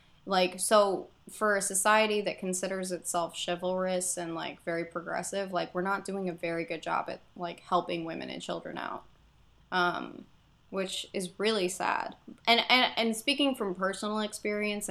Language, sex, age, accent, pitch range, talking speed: English, female, 20-39, American, 180-195 Hz, 160 wpm